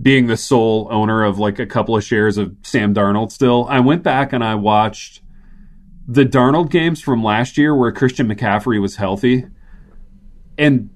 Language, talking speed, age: English, 175 wpm, 30-49